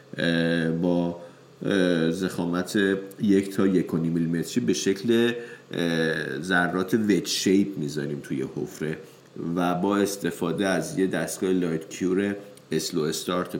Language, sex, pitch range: English, male, 90-105 Hz